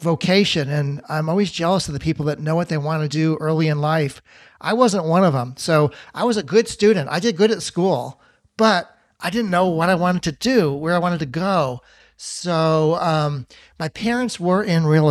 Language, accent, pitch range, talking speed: English, American, 155-195 Hz, 220 wpm